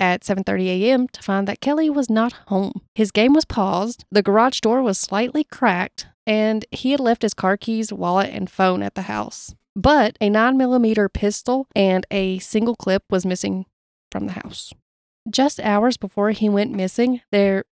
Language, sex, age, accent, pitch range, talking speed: English, female, 30-49, American, 190-235 Hz, 180 wpm